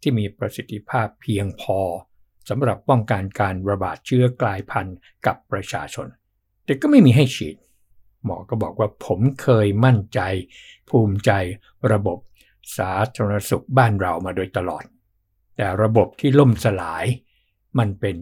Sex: male